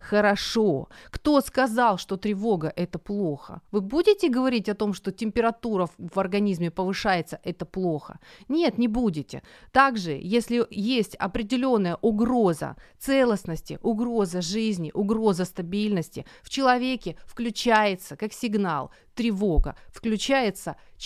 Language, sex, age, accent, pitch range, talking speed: Ukrainian, female, 30-49, native, 185-250 Hz, 110 wpm